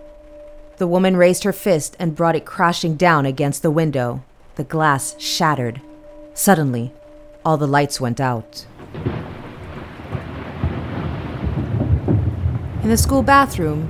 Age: 30-49